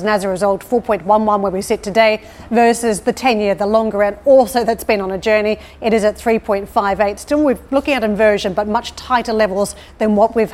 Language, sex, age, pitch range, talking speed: English, female, 40-59, 205-235 Hz, 215 wpm